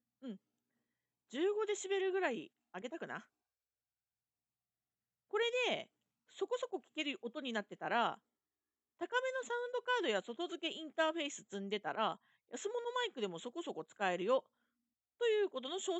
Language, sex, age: Japanese, female, 40-59